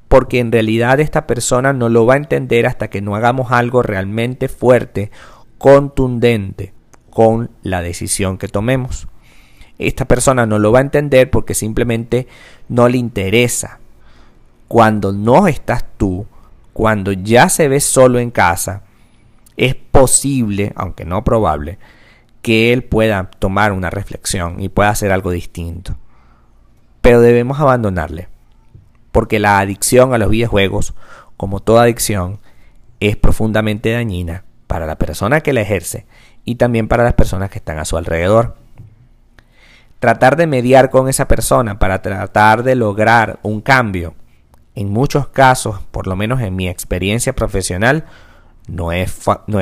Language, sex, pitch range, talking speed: Spanish, male, 95-120 Hz, 140 wpm